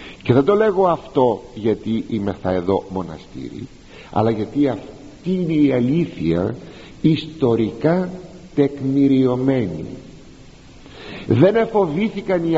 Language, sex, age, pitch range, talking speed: Greek, male, 50-69, 95-160 Hz, 100 wpm